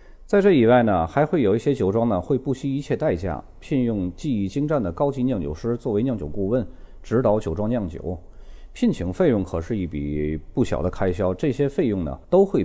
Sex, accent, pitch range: male, native, 85-120 Hz